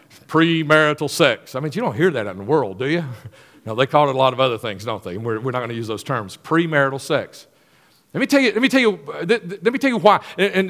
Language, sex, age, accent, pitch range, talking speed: English, male, 40-59, American, 125-175 Hz, 290 wpm